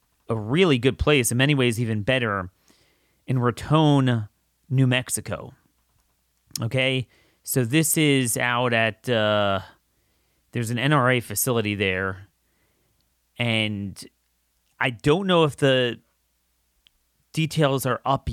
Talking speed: 110 wpm